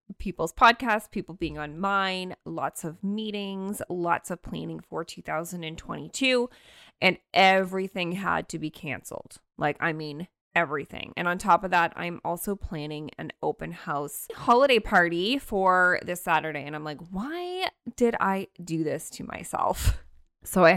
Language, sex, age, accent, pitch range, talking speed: English, female, 20-39, American, 150-190 Hz, 150 wpm